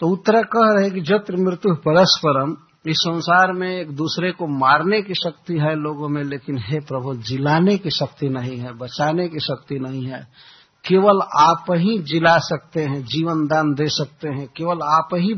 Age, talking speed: 60-79, 185 wpm